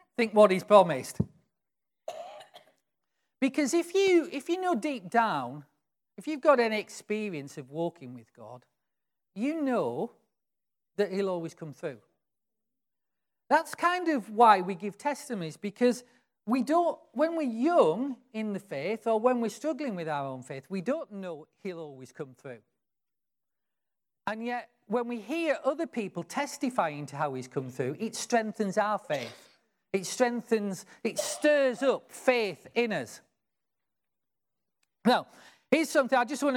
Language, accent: English, British